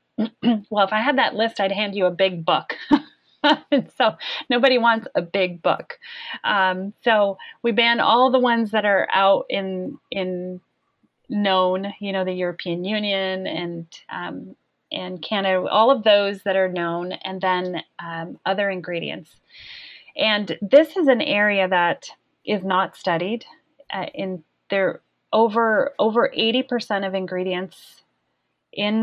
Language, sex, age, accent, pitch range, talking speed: English, female, 30-49, American, 180-220 Hz, 145 wpm